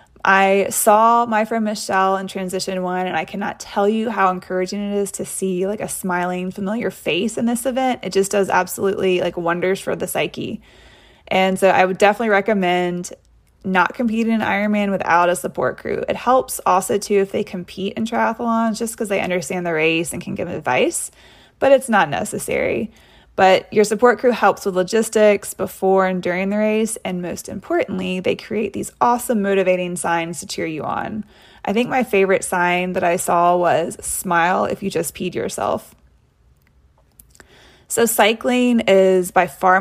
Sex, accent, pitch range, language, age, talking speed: female, American, 180-215 Hz, English, 20-39, 180 wpm